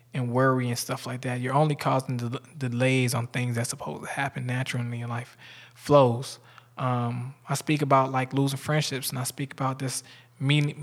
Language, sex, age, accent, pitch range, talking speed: English, male, 20-39, American, 125-140 Hz, 190 wpm